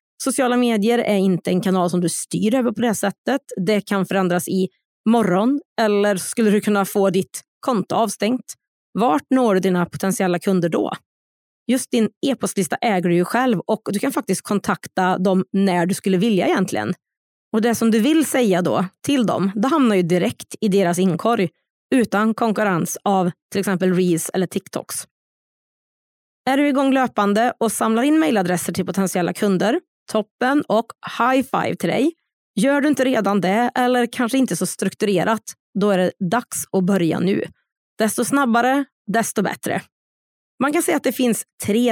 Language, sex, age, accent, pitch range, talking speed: Swedish, female, 30-49, native, 185-235 Hz, 170 wpm